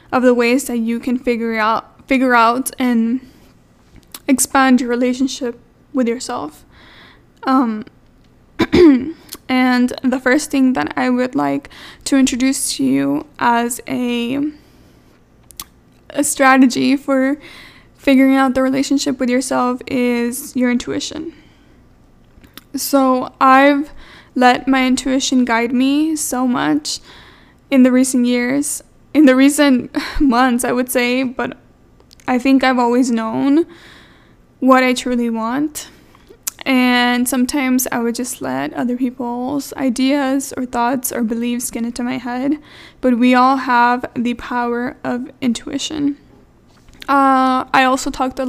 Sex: female